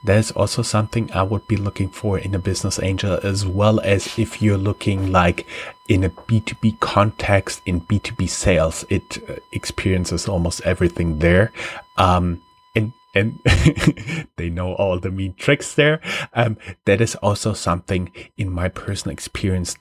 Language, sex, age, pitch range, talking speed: English, male, 30-49, 90-115 Hz, 150 wpm